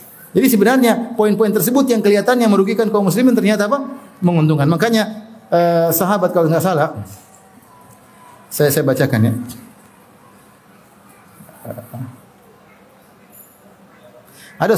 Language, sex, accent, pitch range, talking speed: Indonesian, male, native, 130-180 Hz, 95 wpm